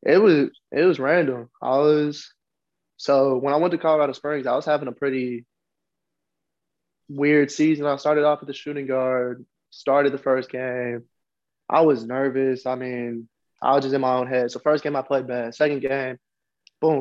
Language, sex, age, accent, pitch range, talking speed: English, male, 20-39, American, 130-150 Hz, 185 wpm